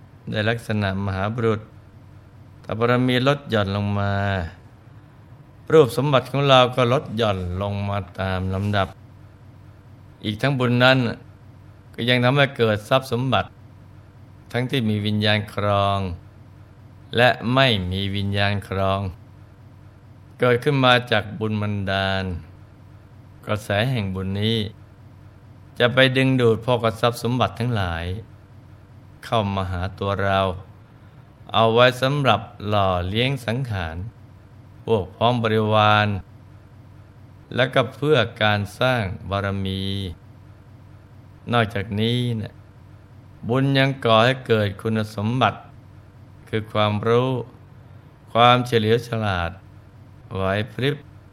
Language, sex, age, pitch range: Thai, male, 20-39, 100-115 Hz